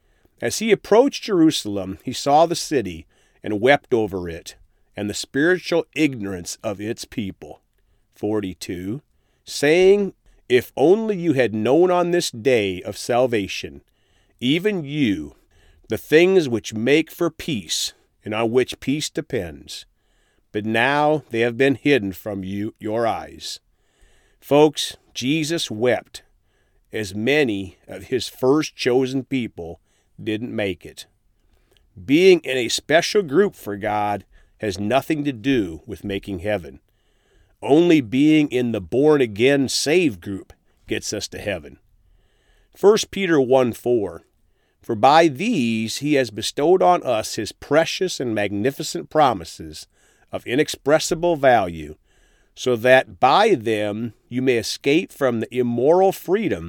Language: English